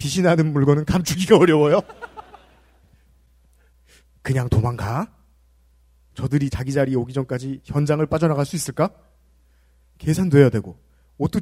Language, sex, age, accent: Korean, male, 30-49, native